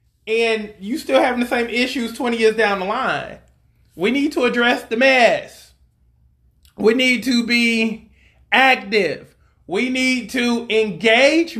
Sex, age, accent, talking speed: male, 30-49, American, 140 wpm